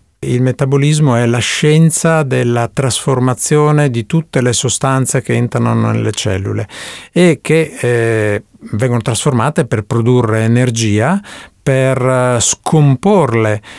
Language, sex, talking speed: Italian, male, 110 wpm